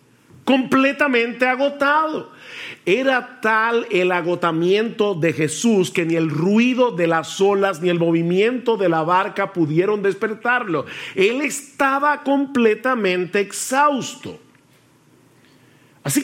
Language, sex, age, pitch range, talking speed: Spanish, male, 50-69, 150-200 Hz, 105 wpm